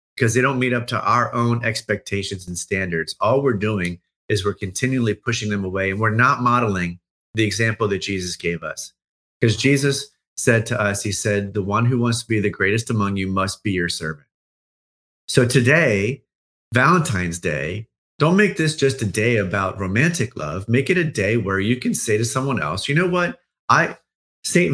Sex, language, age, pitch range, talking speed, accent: male, English, 30-49, 95-130 Hz, 195 wpm, American